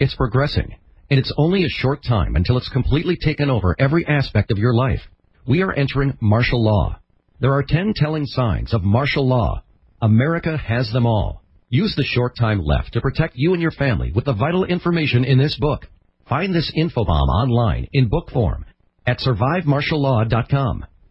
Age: 50-69